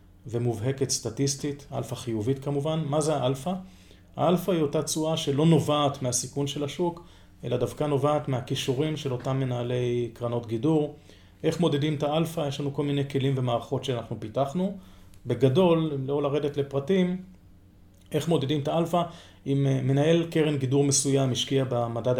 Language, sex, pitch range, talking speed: Hebrew, male, 125-155 Hz, 145 wpm